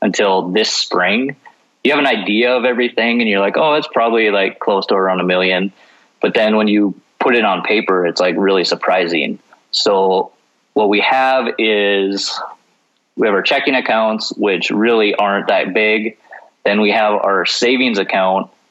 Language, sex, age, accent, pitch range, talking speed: English, male, 20-39, American, 100-110 Hz, 175 wpm